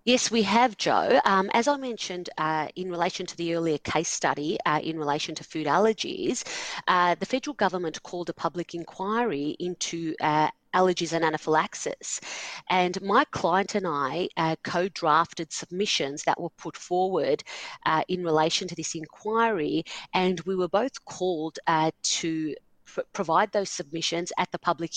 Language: English